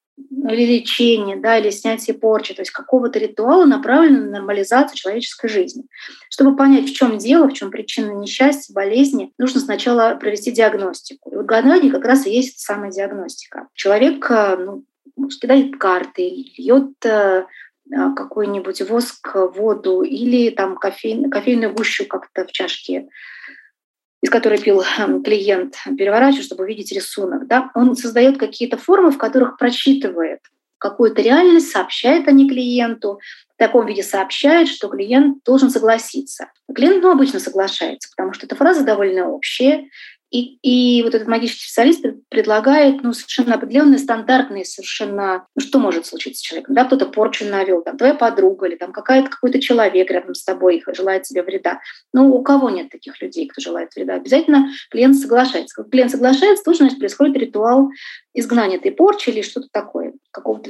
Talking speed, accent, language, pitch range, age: 150 wpm, native, Russian, 210-275 Hz, 20-39